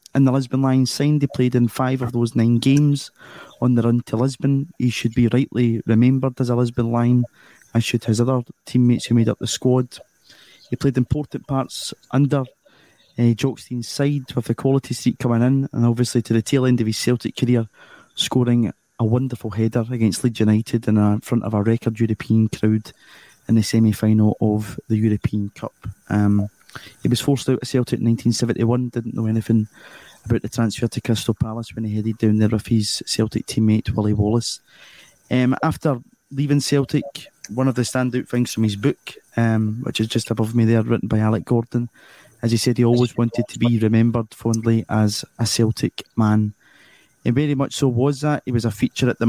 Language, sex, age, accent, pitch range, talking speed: English, male, 20-39, British, 115-130 Hz, 195 wpm